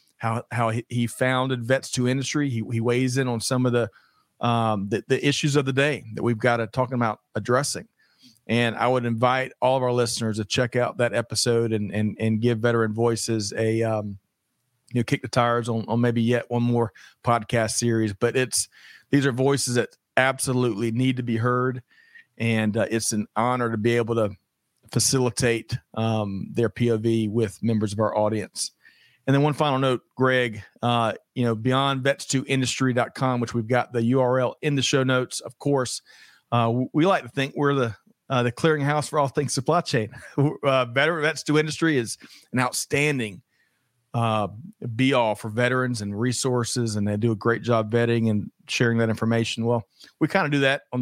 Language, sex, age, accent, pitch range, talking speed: English, male, 40-59, American, 115-130 Hz, 190 wpm